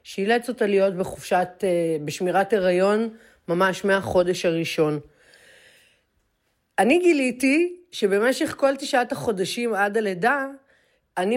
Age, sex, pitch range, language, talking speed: 40-59, female, 175-235 Hz, Hebrew, 95 wpm